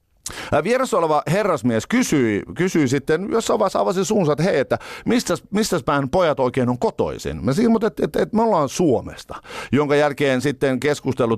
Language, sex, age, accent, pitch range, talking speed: Finnish, male, 50-69, native, 120-175 Hz, 155 wpm